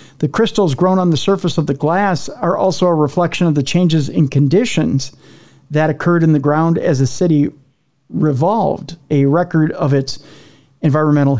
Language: English